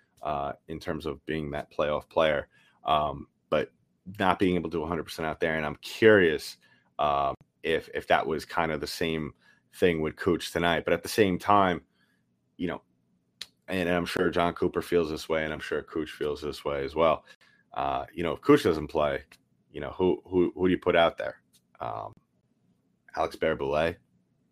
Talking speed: 195 wpm